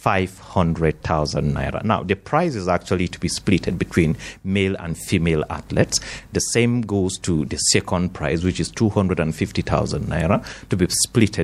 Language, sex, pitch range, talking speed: English, male, 90-120 Hz, 150 wpm